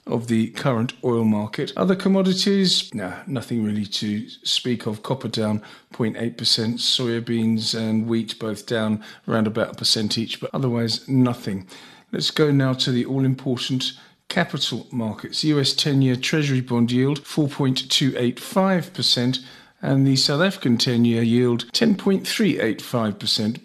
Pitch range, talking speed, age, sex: 115-155 Hz, 130 wpm, 40-59, male